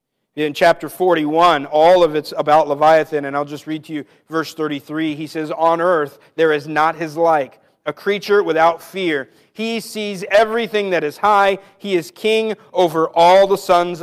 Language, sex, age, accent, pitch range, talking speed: English, male, 40-59, American, 150-180 Hz, 180 wpm